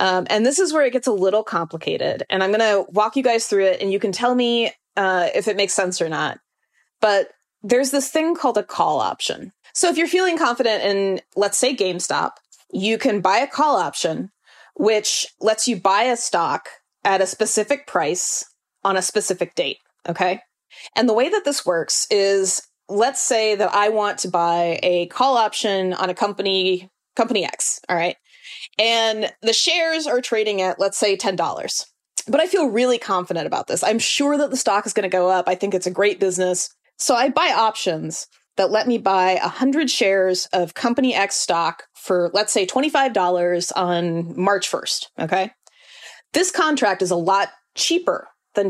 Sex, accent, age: female, American, 20-39